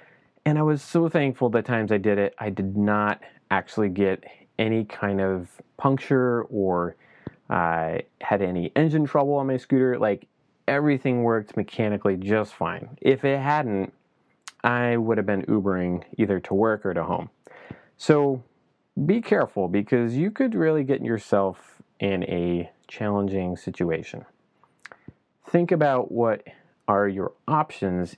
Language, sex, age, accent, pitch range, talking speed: English, male, 30-49, American, 100-140 Hz, 145 wpm